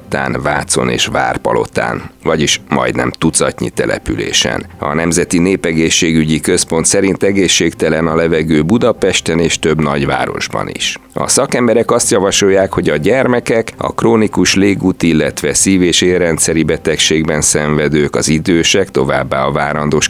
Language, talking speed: Hungarian, 120 wpm